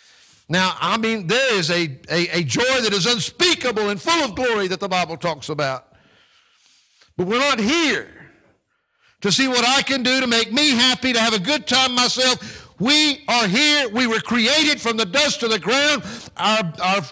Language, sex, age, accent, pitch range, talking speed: English, male, 60-79, American, 175-255 Hz, 195 wpm